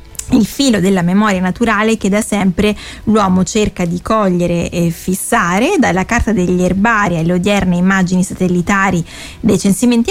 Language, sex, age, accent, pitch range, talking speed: Italian, female, 20-39, native, 180-215 Hz, 140 wpm